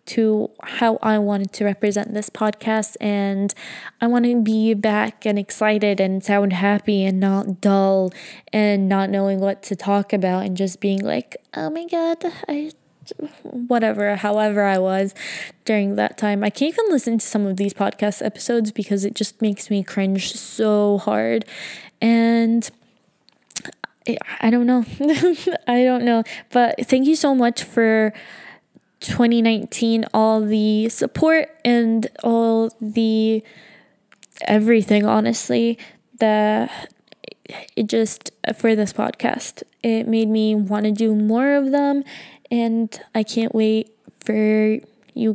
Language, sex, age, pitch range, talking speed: English, female, 10-29, 205-240 Hz, 140 wpm